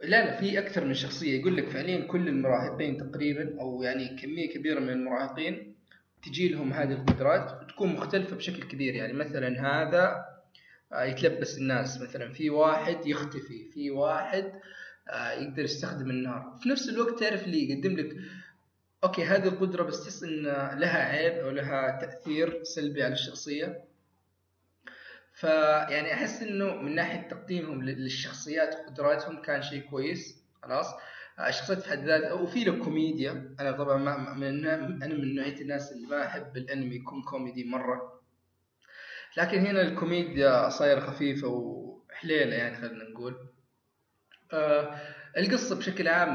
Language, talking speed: Arabic, 135 wpm